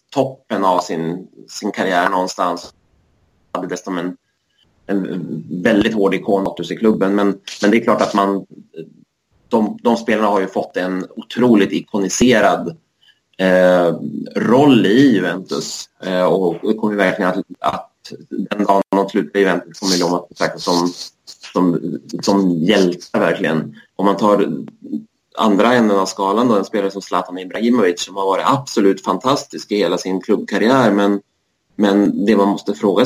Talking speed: 155 wpm